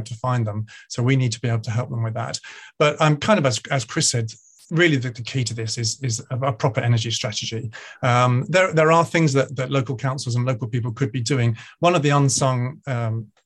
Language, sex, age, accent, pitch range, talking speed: English, male, 40-59, British, 120-145 Hz, 245 wpm